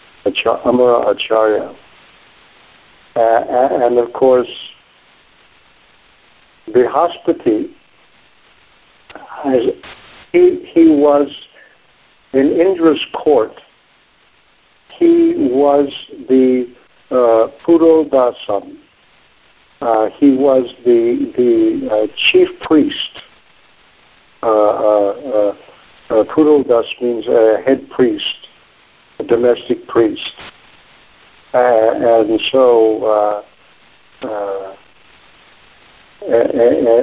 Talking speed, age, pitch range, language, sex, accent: 75 wpm, 60-79, 115-155 Hz, English, male, American